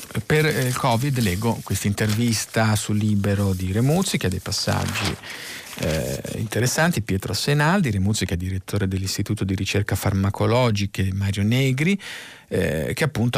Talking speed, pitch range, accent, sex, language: 140 wpm, 105-130 Hz, native, male, Italian